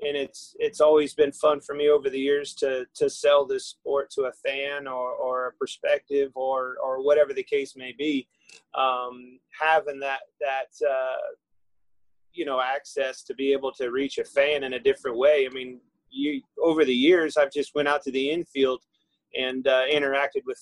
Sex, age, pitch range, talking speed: male, 30-49, 130-150 Hz, 190 wpm